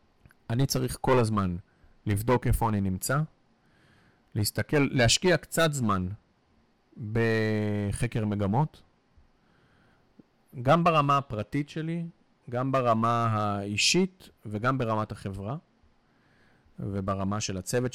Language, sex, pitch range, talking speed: Hebrew, male, 105-140 Hz, 90 wpm